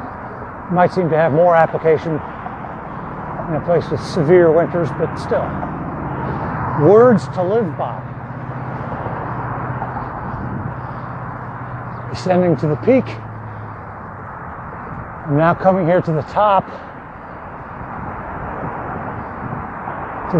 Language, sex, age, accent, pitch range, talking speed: English, male, 60-79, American, 135-190 Hz, 90 wpm